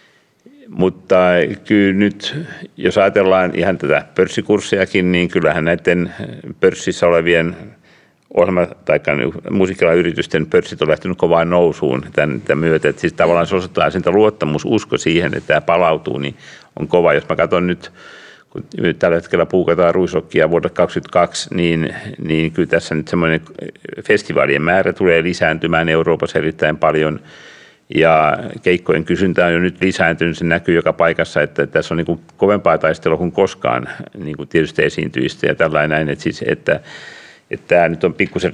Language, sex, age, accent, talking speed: Finnish, male, 60-79, native, 150 wpm